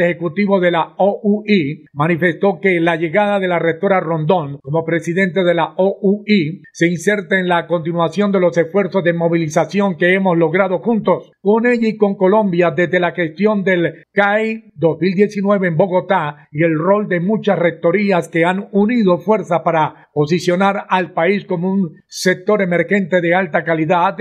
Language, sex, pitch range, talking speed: Spanish, male, 165-195 Hz, 160 wpm